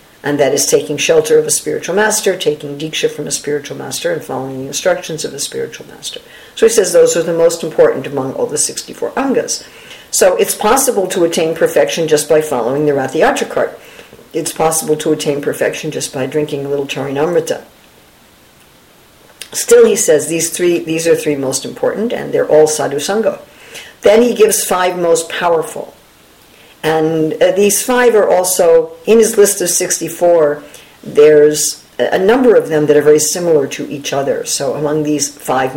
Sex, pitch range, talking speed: female, 150-235 Hz, 175 wpm